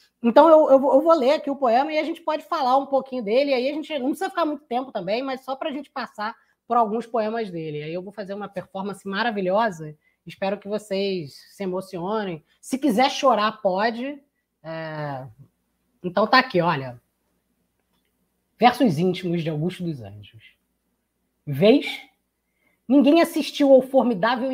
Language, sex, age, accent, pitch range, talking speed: Portuguese, female, 20-39, Brazilian, 175-265 Hz, 165 wpm